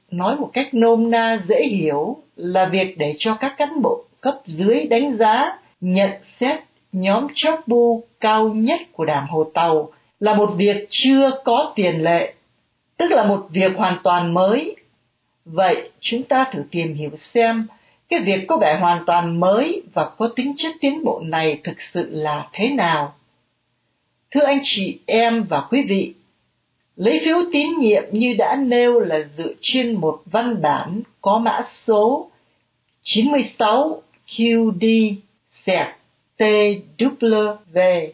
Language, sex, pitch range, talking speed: Vietnamese, female, 185-250 Hz, 145 wpm